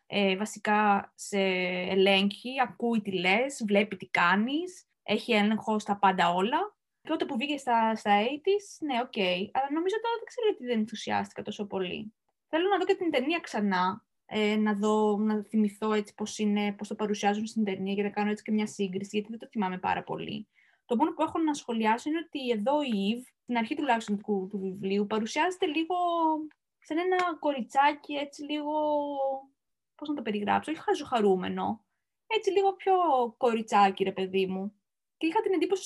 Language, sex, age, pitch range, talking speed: Greek, female, 20-39, 205-295 Hz, 180 wpm